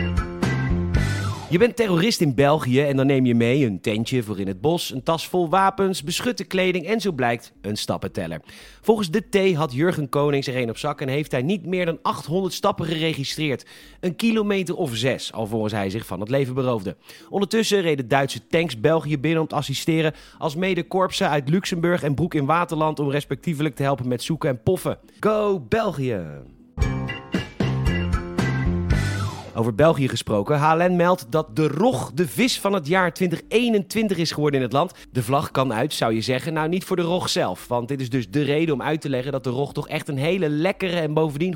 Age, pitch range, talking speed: 30-49, 125-180 Hz, 200 wpm